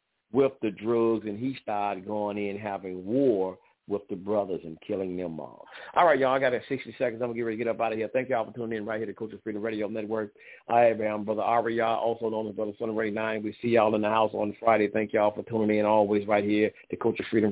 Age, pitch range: 50-69, 100-110 Hz